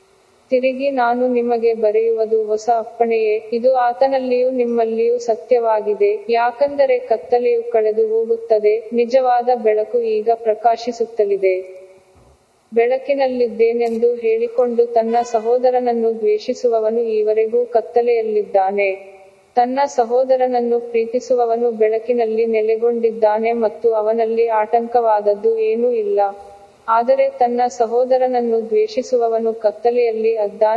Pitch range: 215-245 Hz